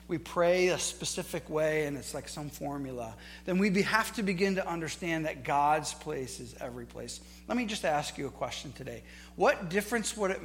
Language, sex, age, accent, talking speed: English, male, 40-59, American, 200 wpm